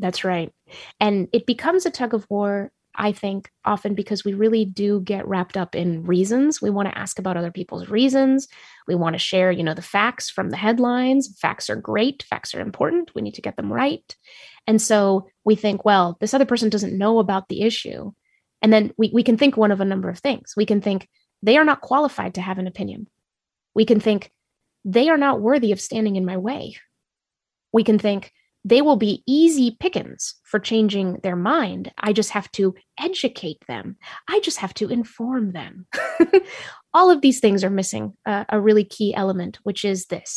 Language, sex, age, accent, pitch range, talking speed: English, female, 20-39, American, 195-240 Hz, 205 wpm